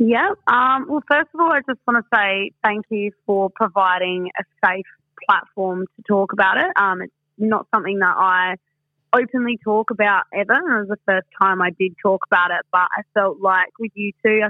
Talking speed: 205 wpm